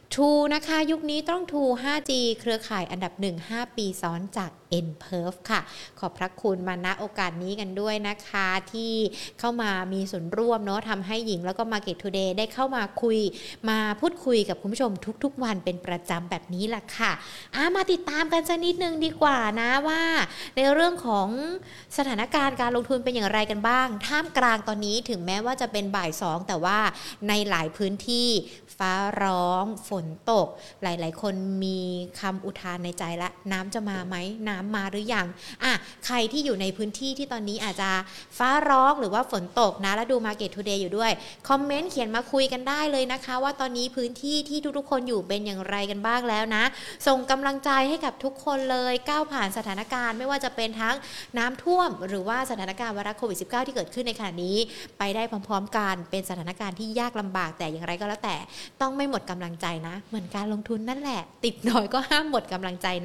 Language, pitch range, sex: Thai, 195-260 Hz, female